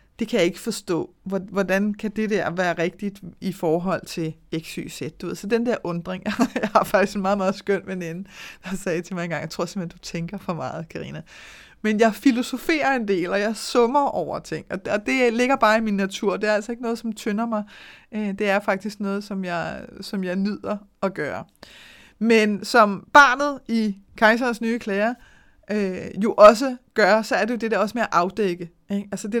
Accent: native